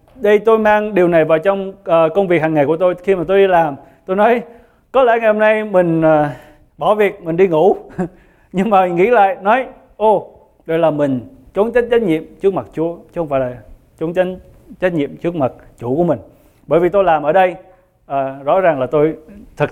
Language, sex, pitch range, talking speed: English, male, 150-205 Hz, 220 wpm